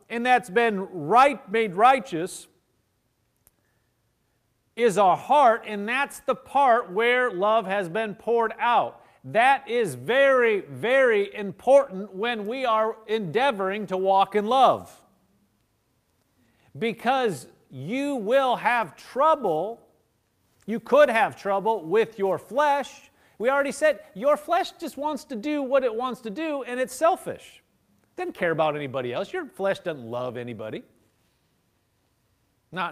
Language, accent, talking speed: English, American, 130 wpm